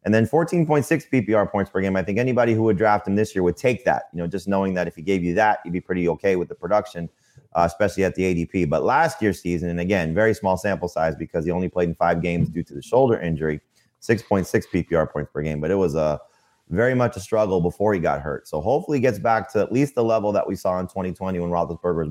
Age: 30-49